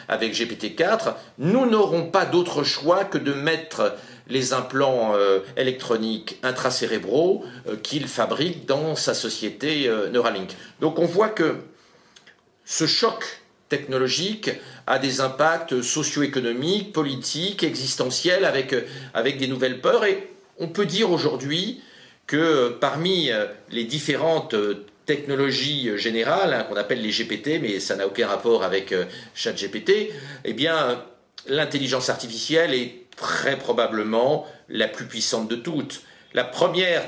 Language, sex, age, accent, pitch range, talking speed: French, male, 50-69, French, 115-165 Hz, 125 wpm